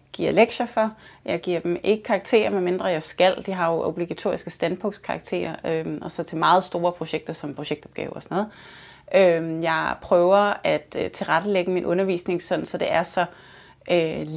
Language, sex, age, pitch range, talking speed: Danish, female, 30-49, 175-200 Hz, 180 wpm